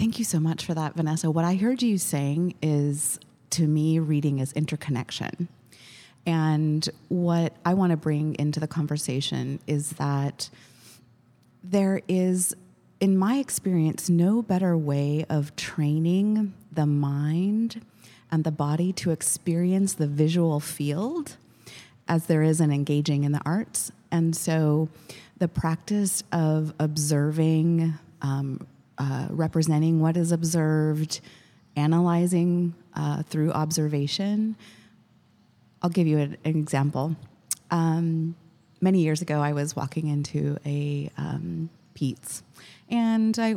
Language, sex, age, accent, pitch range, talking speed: English, female, 30-49, American, 145-175 Hz, 125 wpm